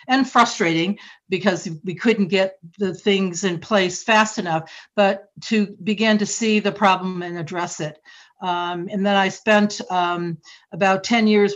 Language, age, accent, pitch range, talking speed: English, 60-79, American, 180-215 Hz, 160 wpm